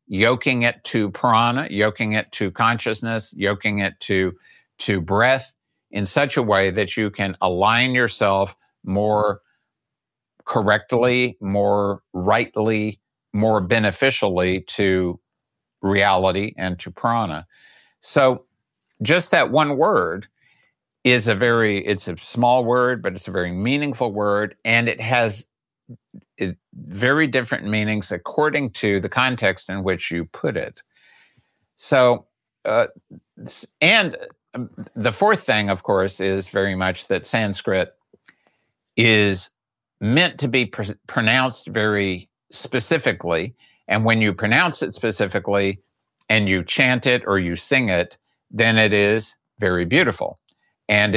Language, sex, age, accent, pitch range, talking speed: English, male, 50-69, American, 95-120 Hz, 125 wpm